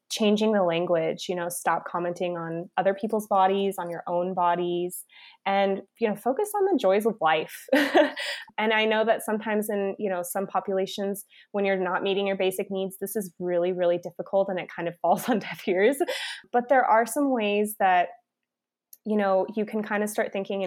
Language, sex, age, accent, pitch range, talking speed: English, female, 20-39, American, 185-215 Hz, 200 wpm